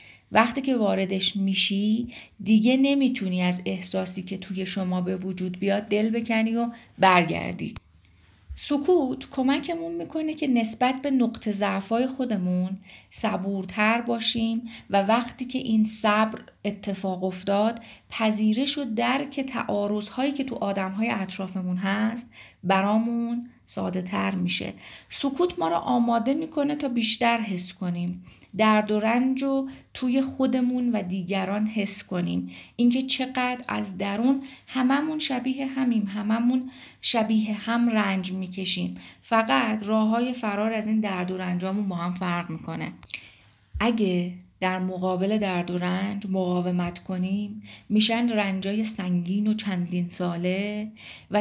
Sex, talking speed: female, 125 wpm